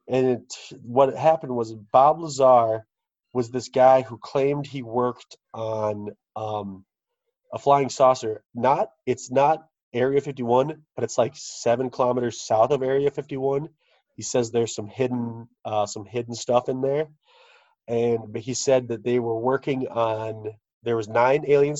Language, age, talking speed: English, 30-49, 160 wpm